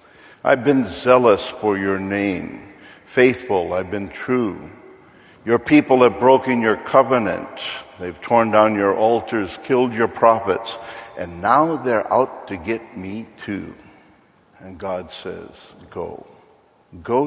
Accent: American